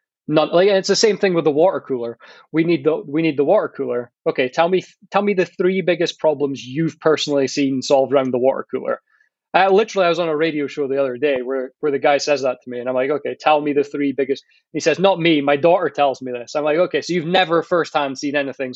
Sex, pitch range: male, 140-185 Hz